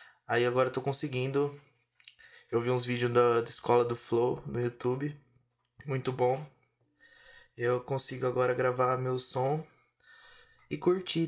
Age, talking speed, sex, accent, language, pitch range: 20-39, 140 wpm, male, Brazilian, Portuguese, 120-135 Hz